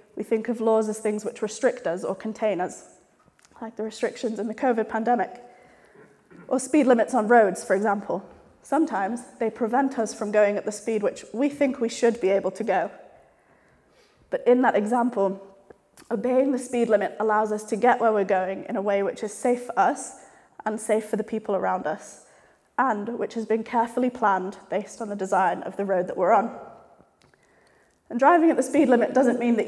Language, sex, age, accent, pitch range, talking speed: English, female, 20-39, British, 205-240 Hz, 200 wpm